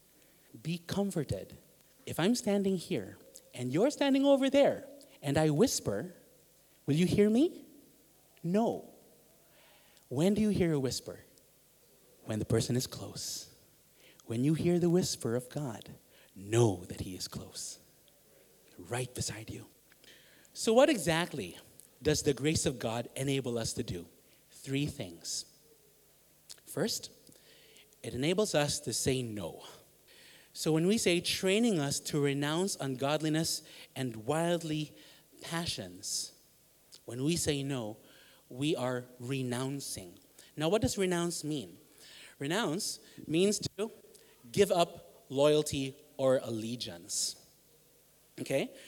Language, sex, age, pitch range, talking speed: English, male, 30-49, 130-205 Hz, 120 wpm